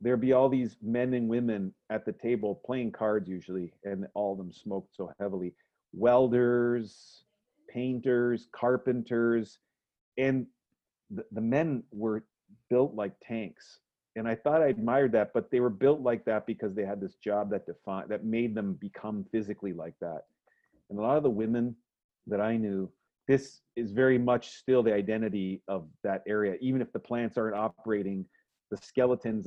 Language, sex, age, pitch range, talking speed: English, male, 40-59, 100-120 Hz, 175 wpm